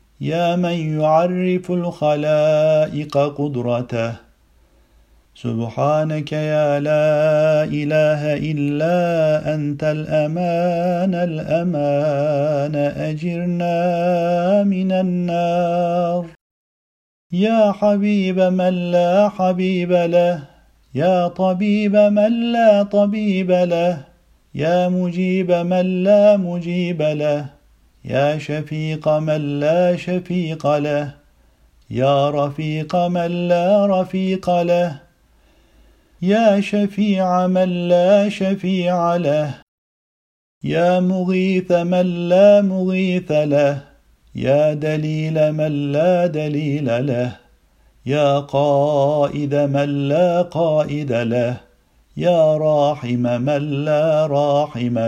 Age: 50-69